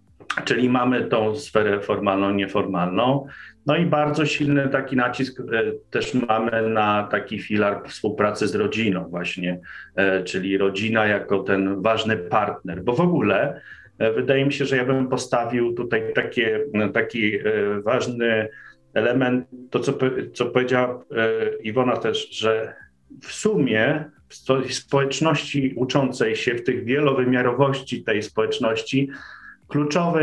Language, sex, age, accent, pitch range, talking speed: Polish, male, 40-59, native, 105-140 Hz, 120 wpm